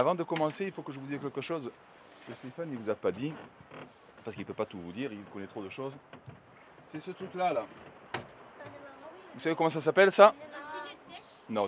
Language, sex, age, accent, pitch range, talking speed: French, male, 30-49, French, 110-160 Hz, 215 wpm